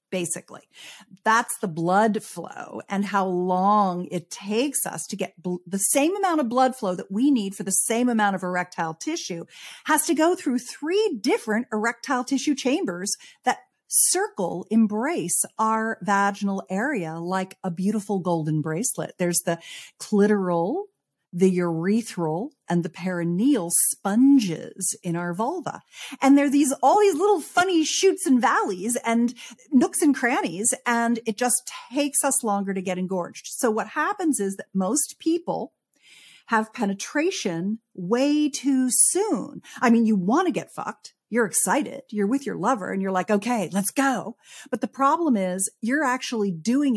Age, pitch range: 50-69, 185-255 Hz